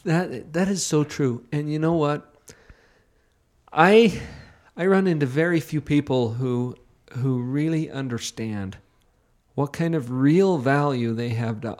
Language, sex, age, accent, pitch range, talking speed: English, male, 50-69, American, 120-160 Hz, 140 wpm